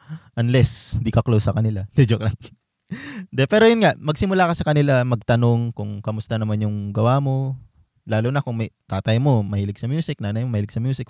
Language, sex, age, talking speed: Filipino, male, 20-39, 190 wpm